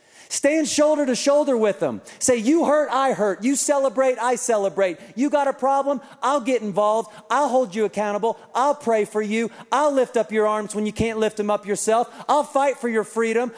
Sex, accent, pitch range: male, American, 190-255 Hz